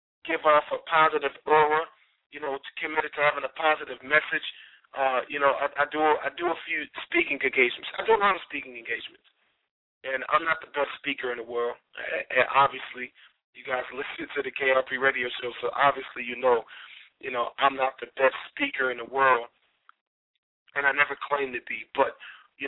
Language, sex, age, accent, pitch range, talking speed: English, male, 30-49, American, 135-170 Hz, 200 wpm